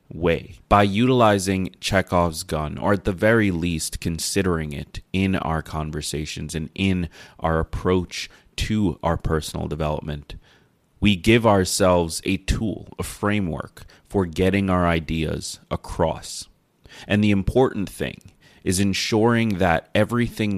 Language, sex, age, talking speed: English, male, 30-49, 125 wpm